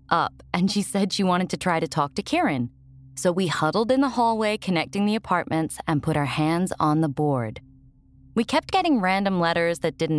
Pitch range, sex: 140-220 Hz, female